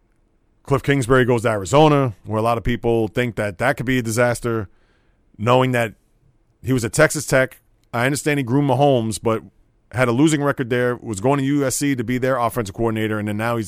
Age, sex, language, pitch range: 30-49, male, English, 110-135 Hz